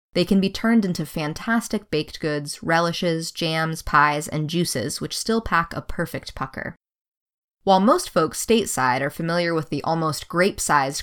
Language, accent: English, American